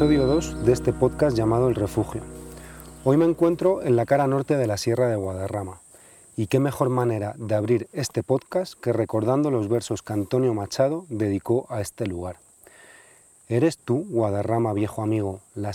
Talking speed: 170 wpm